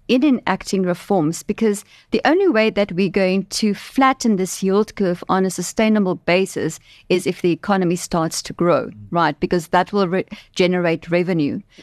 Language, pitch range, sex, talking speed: English, 170-205 Hz, female, 160 wpm